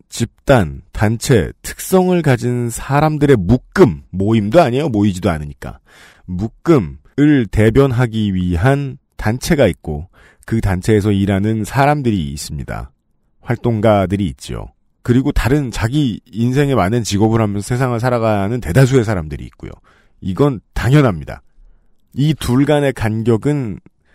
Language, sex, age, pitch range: Korean, male, 40-59, 95-135 Hz